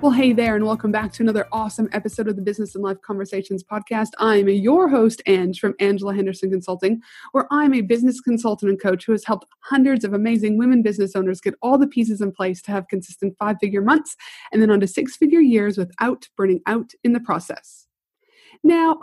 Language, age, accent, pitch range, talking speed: English, 30-49, American, 200-275 Hz, 210 wpm